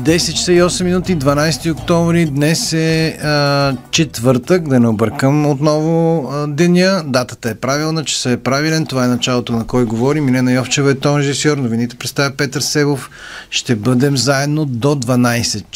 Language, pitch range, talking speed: Bulgarian, 115-145 Hz, 155 wpm